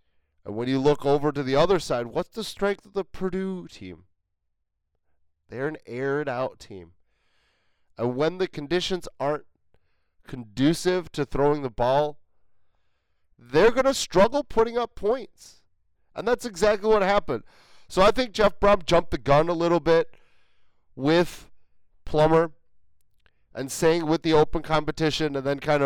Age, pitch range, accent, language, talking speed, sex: 30-49, 115-165 Hz, American, English, 150 wpm, male